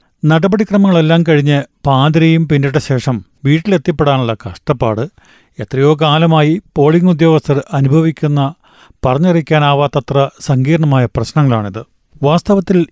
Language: Malayalam